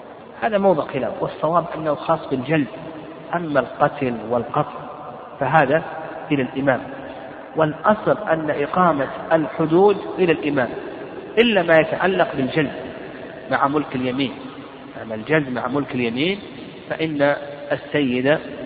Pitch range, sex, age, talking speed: 130-160 Hz, male, 50-69, 105 wpm